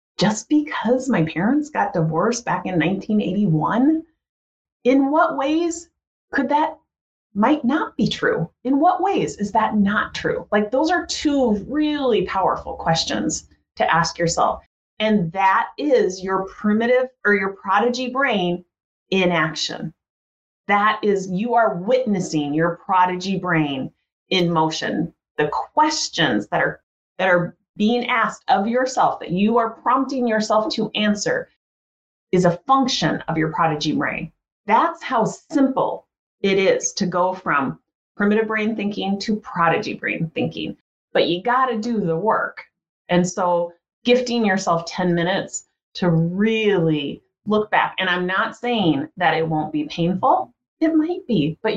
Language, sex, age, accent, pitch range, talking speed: English, female, 30-49, American, 180-250 Hz, 145 wpm